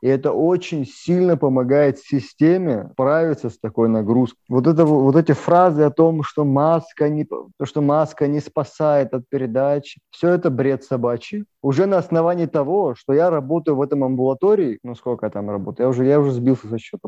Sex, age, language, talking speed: male, 20-39, Russian, 185 wpm